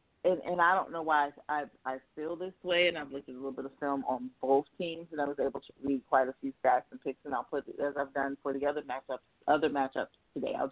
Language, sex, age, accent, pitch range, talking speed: English, female, 30-49, American, 135-160 Hz, 285 wpm